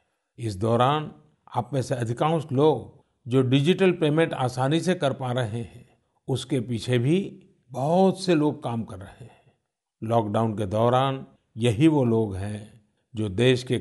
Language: Hindi